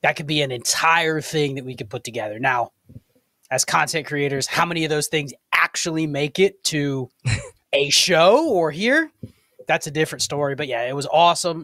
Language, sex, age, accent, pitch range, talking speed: English, male, 20-39, American, 135-165 Hz, 190 wpm